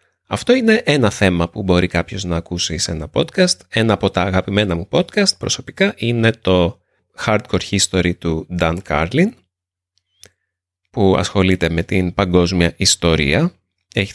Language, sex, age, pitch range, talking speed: Greek, male, 30-49, 90-120 Hz, 140 wpm